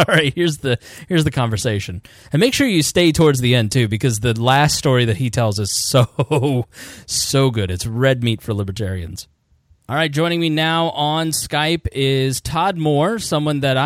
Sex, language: male, English